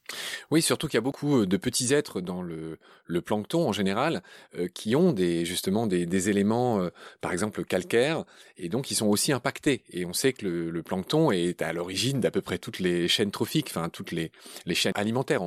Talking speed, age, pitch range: 215 wpm, 30-49, 95-140 Hz